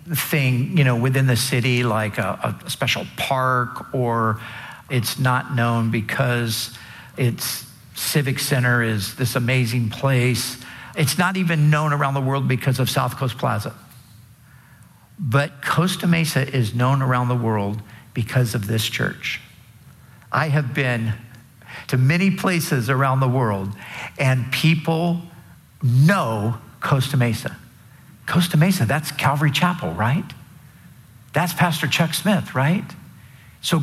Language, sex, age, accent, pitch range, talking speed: English, male, 50-69, American, 120-155 Hz, 130 wpm